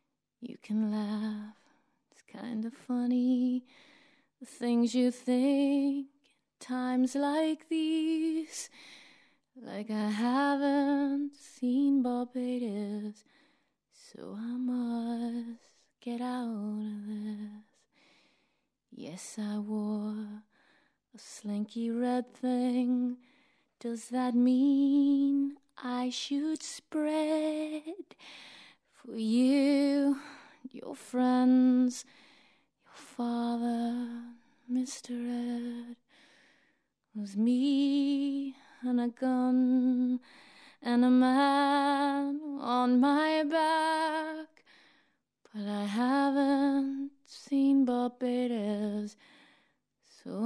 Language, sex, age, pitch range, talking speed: Hebrew, female, 20-39, 240-280 Hz, 80 wpm